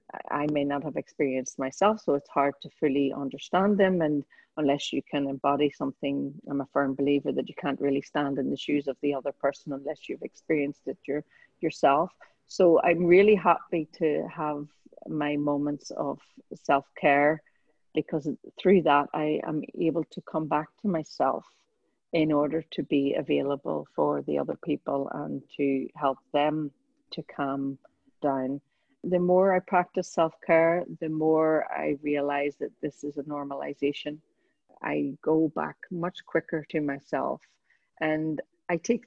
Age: 40-59